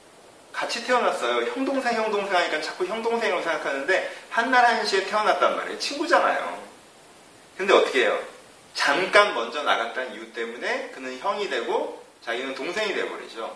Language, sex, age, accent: Korean, male, 30-49, native